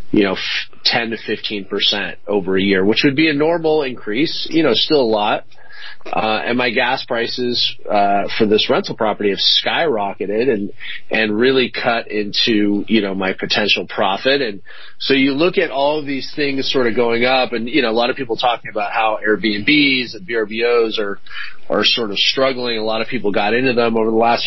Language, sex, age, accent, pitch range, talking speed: English, male, 30-49, American, 105-130 Hz, 200 wpm